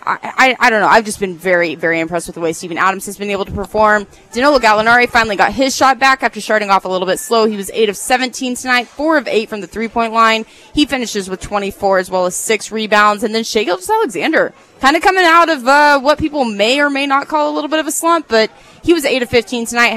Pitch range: 195-265 Hz